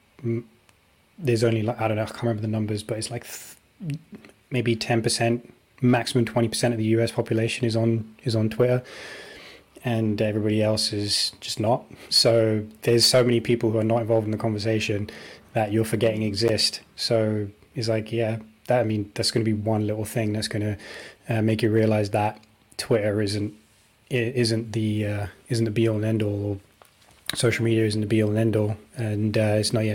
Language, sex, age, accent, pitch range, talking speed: English, male, 20-39, British, 105-115 Hz, 205 wpm